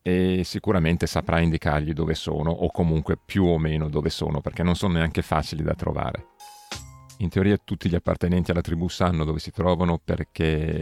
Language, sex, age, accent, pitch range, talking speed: Italian, male, 40-59, native, 80-90 Hz, 175 wpm